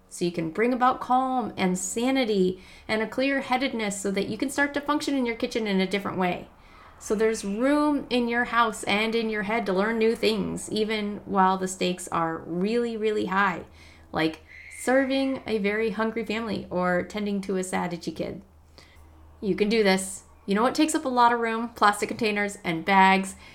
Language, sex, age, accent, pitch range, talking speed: English, female, 30-49, American, 185-235 Hz, 200 wpm